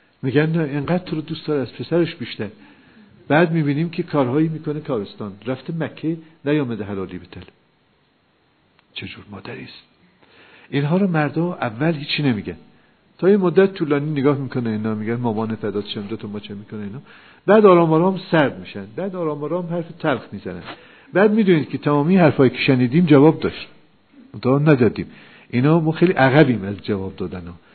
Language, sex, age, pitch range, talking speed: Persian, male, 50-69, 115-165 Hz, 150 wpm